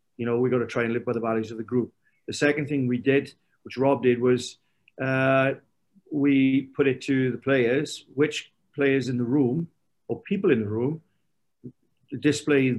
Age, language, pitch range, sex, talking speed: 40-59, English, 120-135 Hz, male, 190 wpm